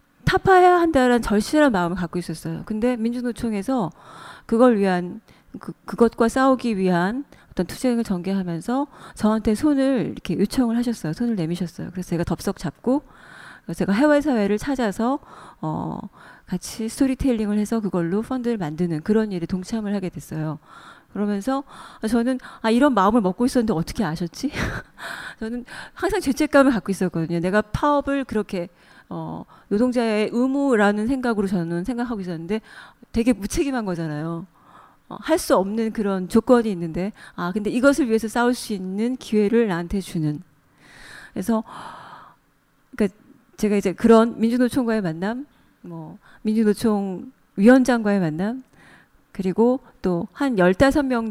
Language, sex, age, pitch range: Korean, female, 30-49, 185-250 Hz